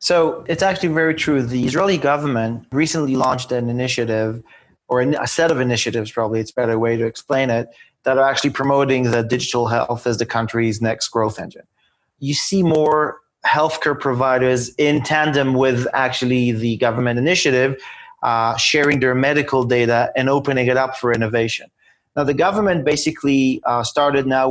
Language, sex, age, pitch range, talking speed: English, male, 30-49, 120-145 Hz, 165 wpm